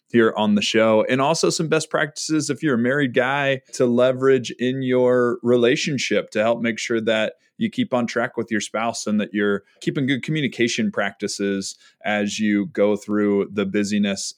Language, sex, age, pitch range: English, male, 20-39, 110-135 Hz